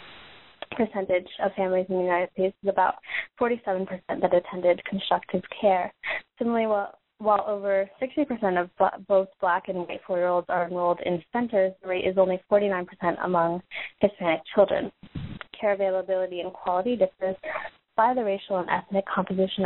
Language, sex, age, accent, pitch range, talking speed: English, female, 20-39, American, 185-220 Hz, 145 wpm